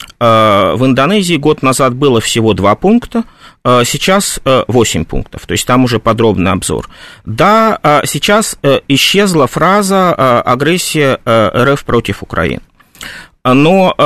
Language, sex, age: Russian, male, 30-49